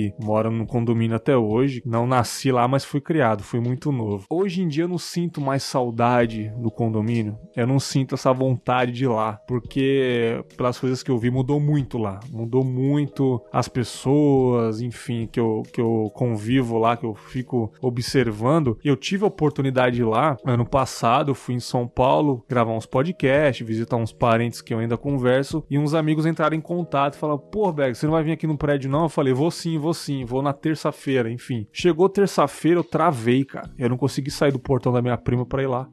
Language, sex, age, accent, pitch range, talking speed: Portuguese, male, 20-39, Brazilian, 120-155 Hz, 210 wpm